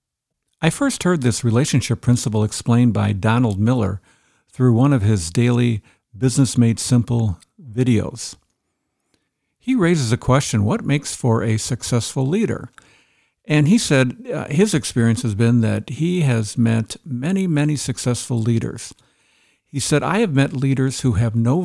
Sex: male